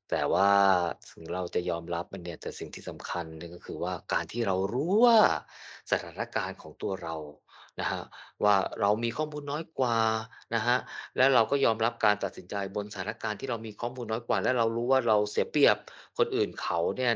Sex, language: male, Thai